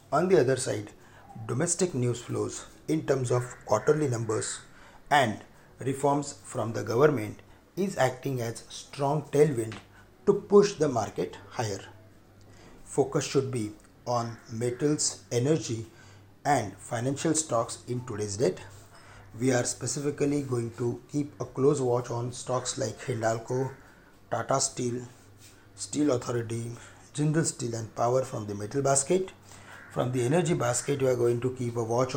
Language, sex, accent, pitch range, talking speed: English, male, Indian, 110-135 Hz, 140 wpm